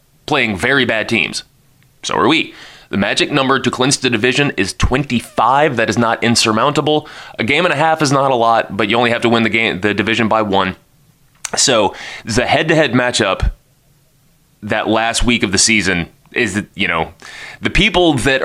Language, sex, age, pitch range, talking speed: English, male, 20-39, 110-135 Hz, 185 wpm